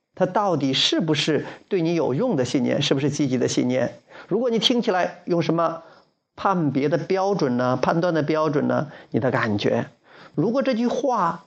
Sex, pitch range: male, 145-195 Hz